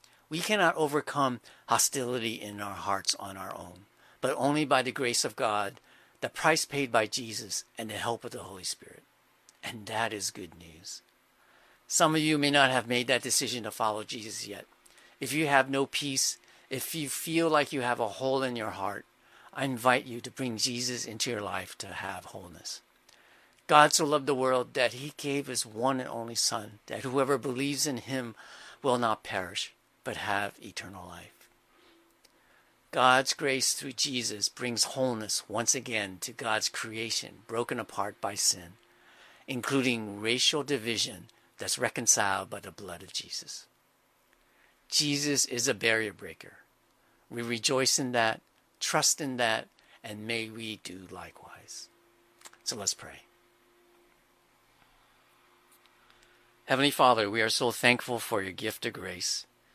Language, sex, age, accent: English, male, 50-69, American